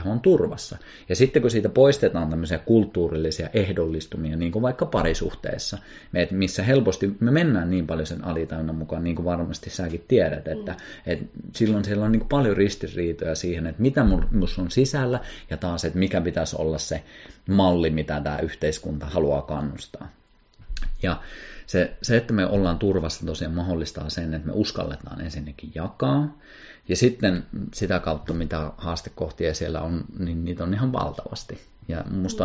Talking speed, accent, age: 160 wpm, native, 30-49